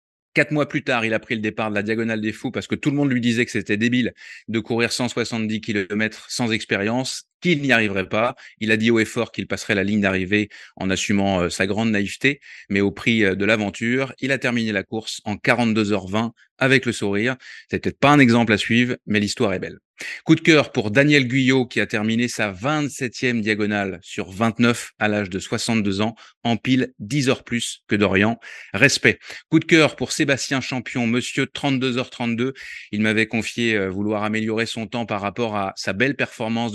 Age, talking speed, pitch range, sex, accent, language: 20-39, 200 wpm, 105-130 Hz, male, French, French